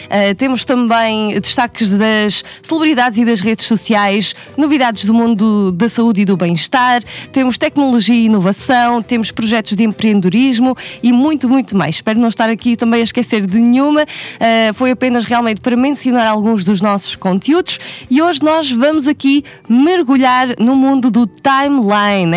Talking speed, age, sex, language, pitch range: 155 wpm, 20-39, female, Portuguese, 215-265 Hz